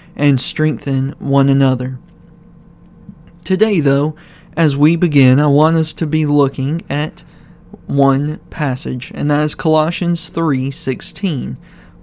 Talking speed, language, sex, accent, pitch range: 115 wpm, English, male, American, 140-160 Hz